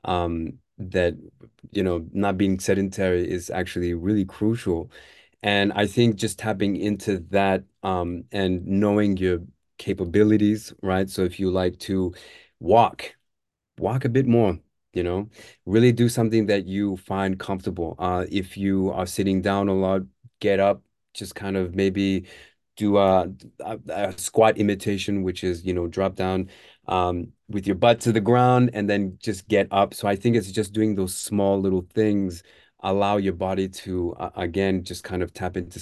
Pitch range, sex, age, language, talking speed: 90-105 Hz, male, 30-49, English, 170 wpm